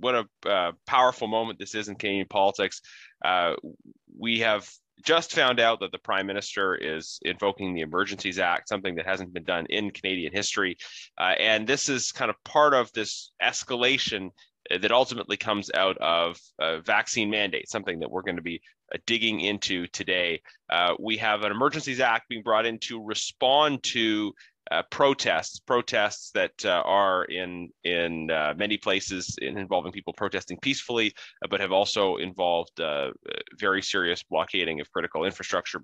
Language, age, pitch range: English, 20-39, 95-115 Hz